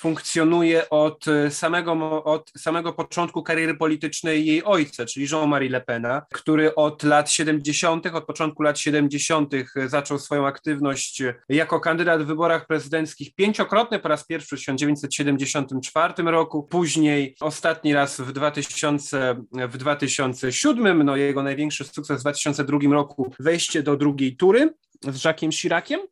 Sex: male